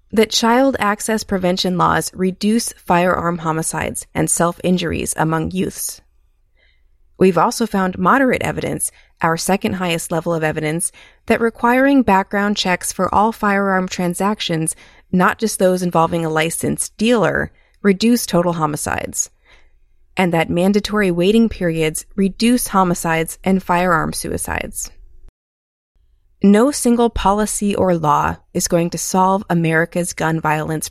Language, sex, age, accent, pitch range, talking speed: English, female, 30-49, American, 165-205 Hz, 120 wpm